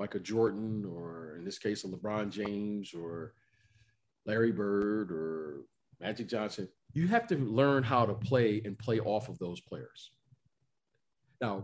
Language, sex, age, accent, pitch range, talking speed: English, male, 40-59, American, 110-150 Hz, 150 wpm